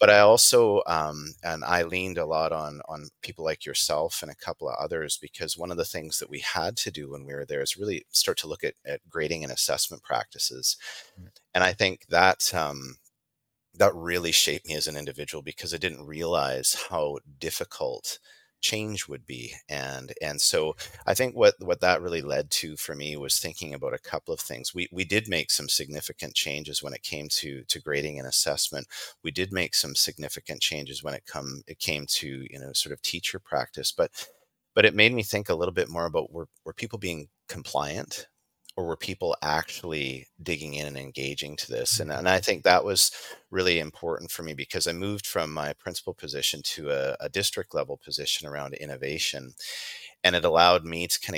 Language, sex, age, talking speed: English, male, 30-49, 205 wpm